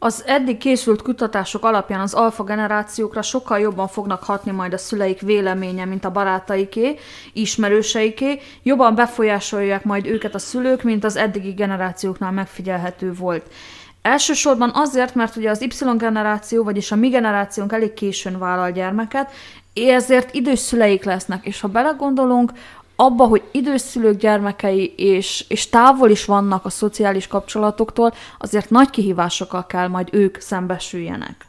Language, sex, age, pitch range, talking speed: Hungarian, female, 20-39, 195-240 Hz, 140 wpm